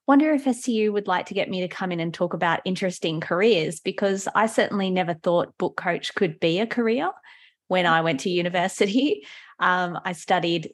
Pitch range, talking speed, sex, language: 170-215 Hz, 195 wpm, female, English